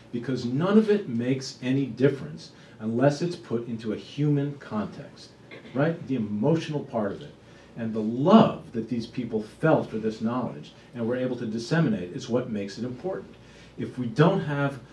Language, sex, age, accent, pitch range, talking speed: English, male, 50-69, American, 115-145 Hz, 175 wpm